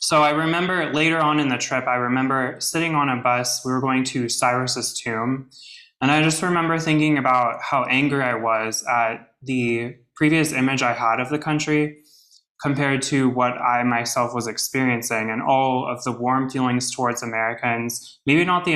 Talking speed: 180 wpm